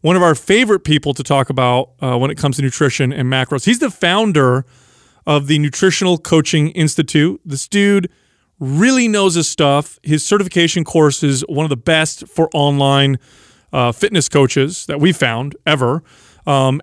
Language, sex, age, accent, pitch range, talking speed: English, male, 30-49, American, 140-170 Hz, 170 wpm